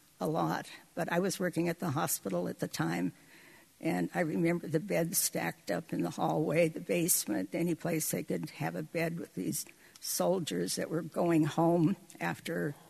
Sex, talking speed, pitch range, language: female, 180 wpm, 160-200 Hz, English